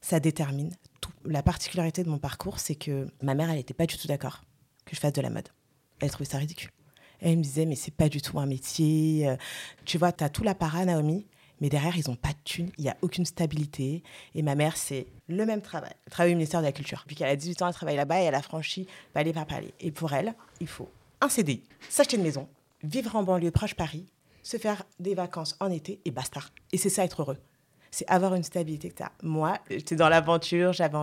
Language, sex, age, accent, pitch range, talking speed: French, female, 30-49, French, 145-170 Hz, 235 wpm